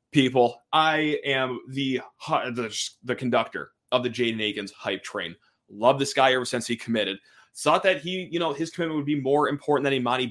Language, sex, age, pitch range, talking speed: English, male, 30-49, 115-150 Hz, 190 wpm